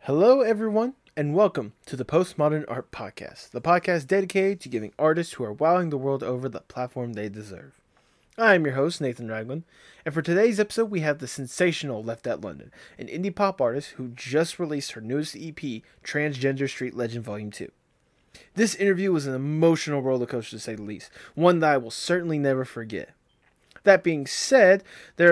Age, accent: 20-39, American